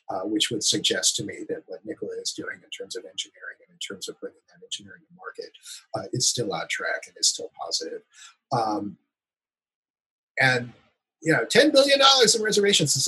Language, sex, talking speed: English, male, 195 wpm